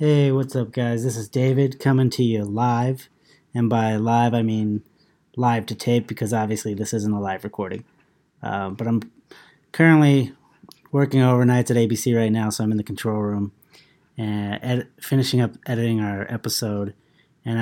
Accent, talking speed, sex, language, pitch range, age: American, 165 wpm, male, English, 110-130 Hz, 30-49